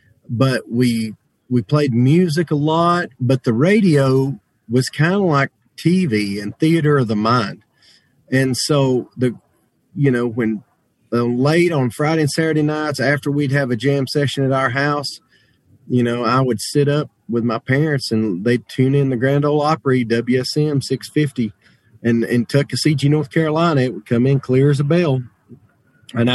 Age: 40-59